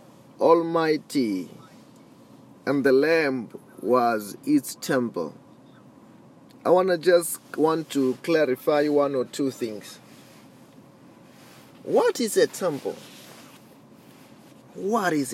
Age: 30-49